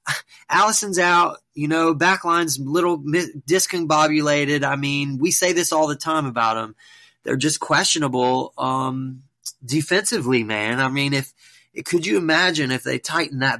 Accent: American